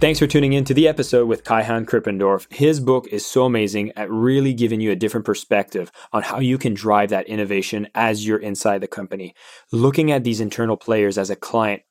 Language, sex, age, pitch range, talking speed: English, male, 20-39, 105-125 Hz, 210 wpm